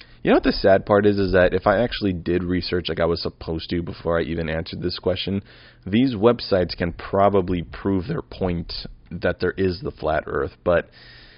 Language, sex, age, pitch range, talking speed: English, male, 20-39, 85-105 Hz, 205 wpm